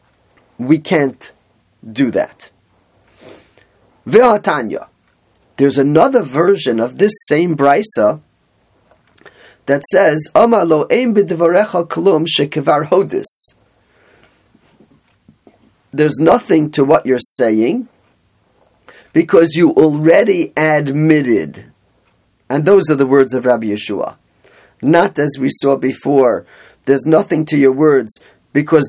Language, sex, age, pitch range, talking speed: English, male, 40-59, 135-160 Hz, 95 wpm